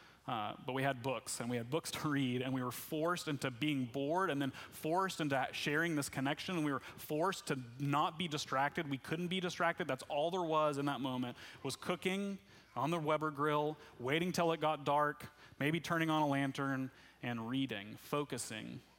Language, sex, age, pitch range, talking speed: English, male, 30-49, 135-165 Hz, 200 wpm